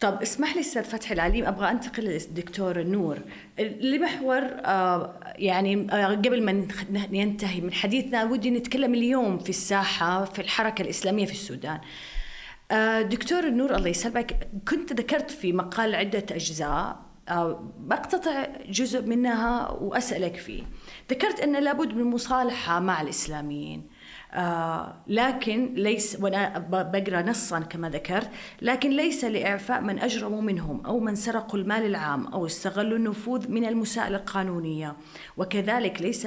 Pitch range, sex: 185-240 Hz, female